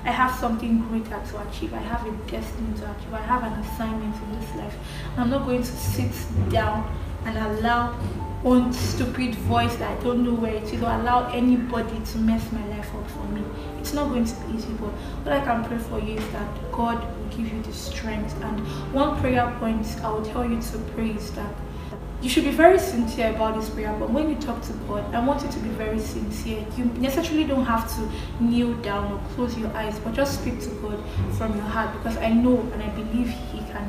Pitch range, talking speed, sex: 215-250 Hz, 225 wpm, female